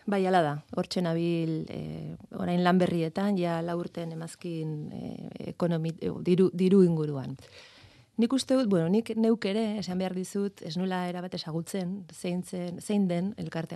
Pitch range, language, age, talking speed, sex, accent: 155-185 Hz, Spanish, 30-49, 150 wpm, female, Spanish